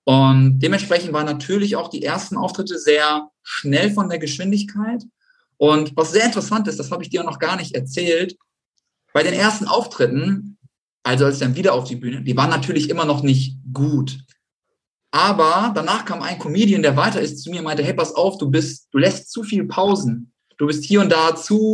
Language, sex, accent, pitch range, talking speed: German, male, German, 130-185 Hz, 200 wpm